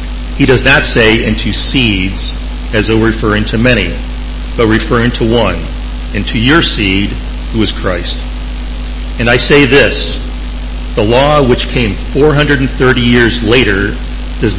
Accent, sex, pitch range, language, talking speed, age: American, male, 85-125 Hz, English, 140 wpm, 50-69